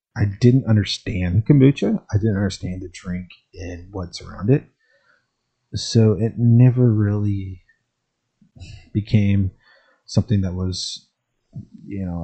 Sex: male